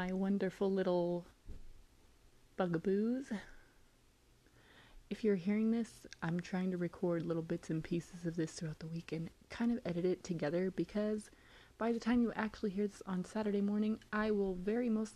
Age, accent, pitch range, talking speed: 20-39, American, 170-210 Hz, 160 wpm